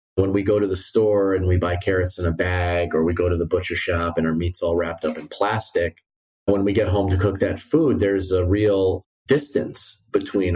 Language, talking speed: English, 235 wpm